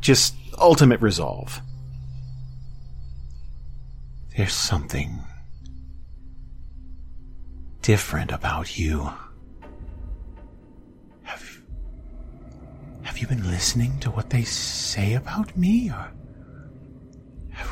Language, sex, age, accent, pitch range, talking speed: English, male, 40-59, American, 80-130 Hz, 70 wpm